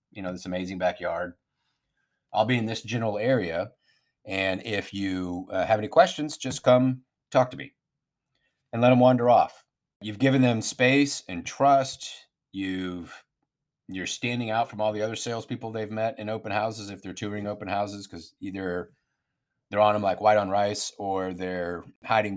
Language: English